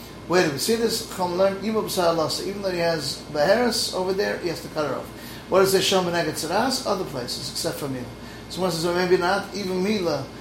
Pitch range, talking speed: 150-190 Hz, 200 wpm